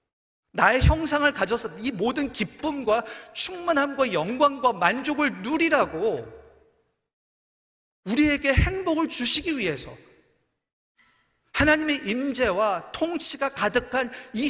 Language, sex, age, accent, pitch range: Korean, male, 40-59, native, 210-295 Hz